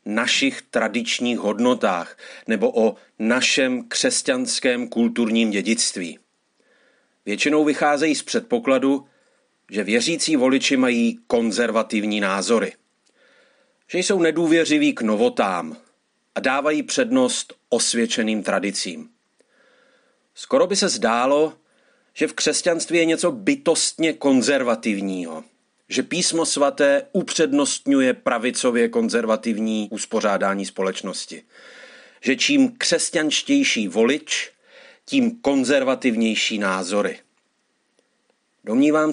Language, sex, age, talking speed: Czech, male, 40-59, 85 wpm